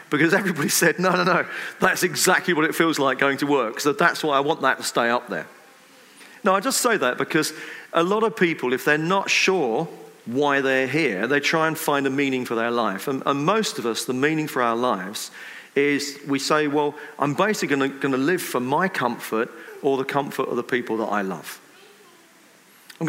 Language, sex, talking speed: English, male, 215 wpm